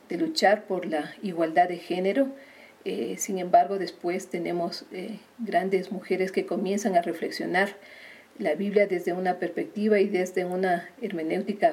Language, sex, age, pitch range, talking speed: Spanish, female, 40-59, 185-240 Hz, 145 wpm